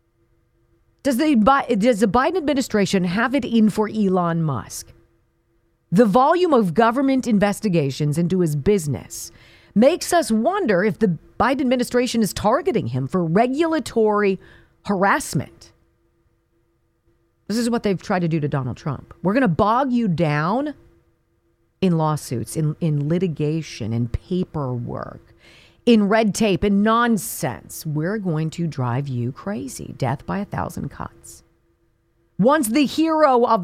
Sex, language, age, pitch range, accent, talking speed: female, English, 40-59, 150-245 Hz, American, 135 wpm